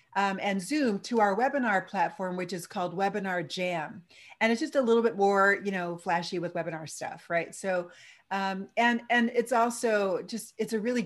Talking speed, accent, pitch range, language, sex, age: 195 wpm, American, 180-235 Hz, English, female, 40-59